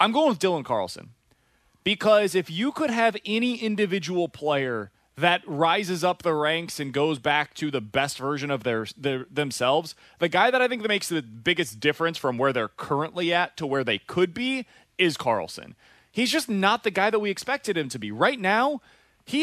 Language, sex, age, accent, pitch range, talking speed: English, male, 30-49, American, 140-200 Hz, 200 wpm